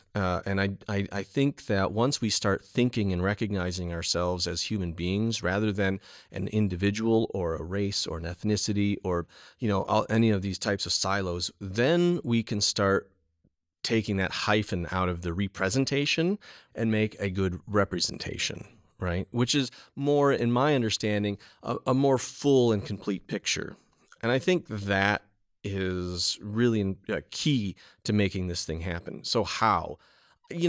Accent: American